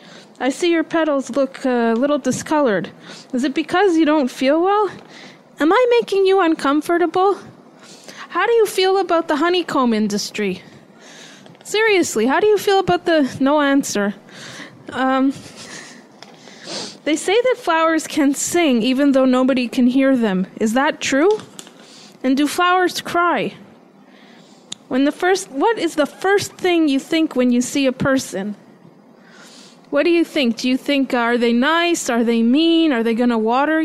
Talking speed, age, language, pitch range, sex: 160 wpm, 30-49, English, 240-345 Hz, female